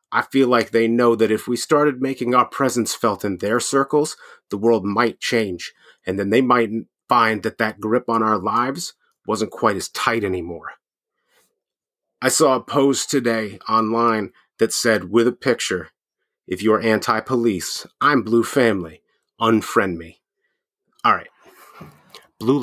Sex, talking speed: male, 155 wpm